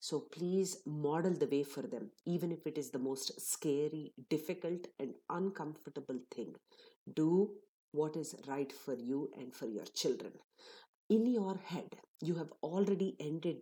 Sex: female